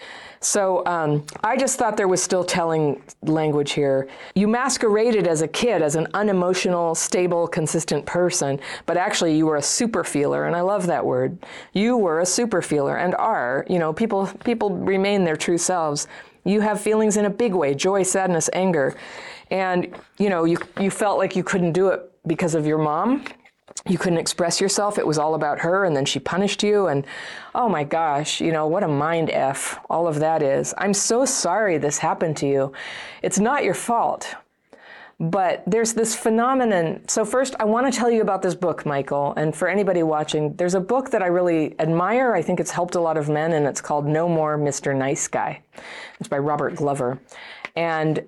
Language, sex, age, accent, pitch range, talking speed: English, female, 40-59, American, 150-195 Hz, 200 wpm